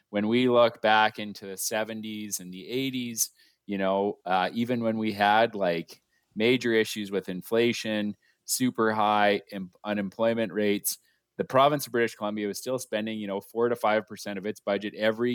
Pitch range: 100-120 Hz